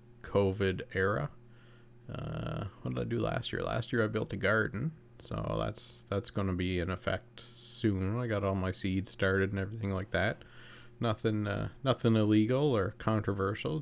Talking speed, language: 175 wpm, English